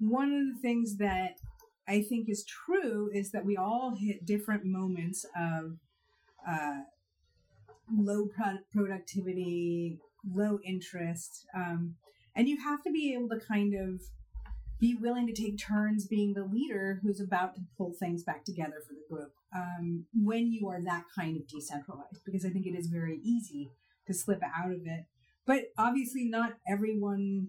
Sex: female